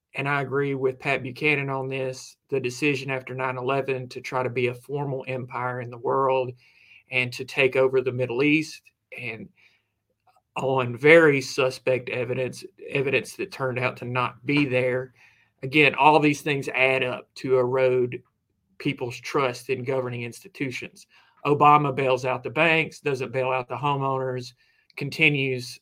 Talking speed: 155 wpm